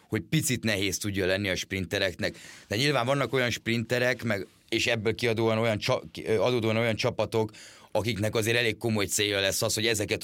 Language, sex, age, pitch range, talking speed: Hungarian, male, 30-49, 95-115 Hz, 170 wpm